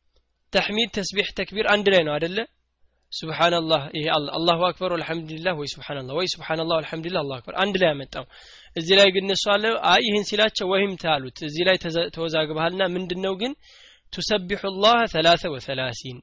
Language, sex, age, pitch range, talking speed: Amharic, male, 20-39, 150-195 Hz, 125 wpm